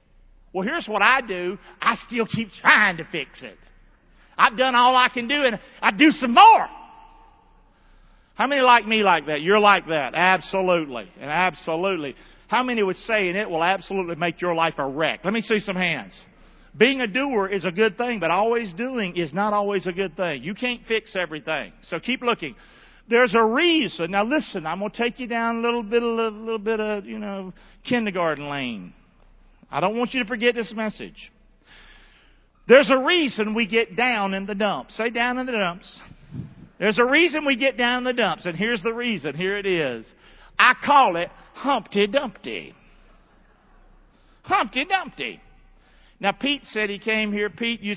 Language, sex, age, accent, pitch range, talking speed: English, male, 50-69, American, 185-240 Hz, 190 wpm